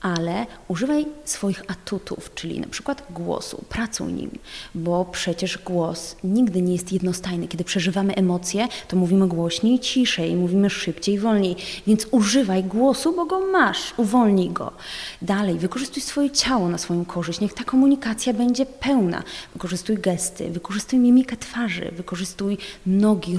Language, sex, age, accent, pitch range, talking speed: Polish, female, 20-39, native, 180-230 Hz, 140 wpm